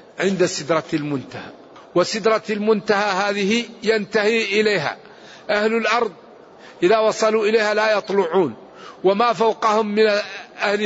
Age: 50-69